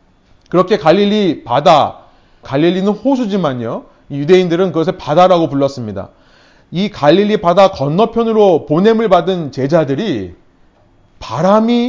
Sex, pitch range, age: male, 145-225 Hz, 30-49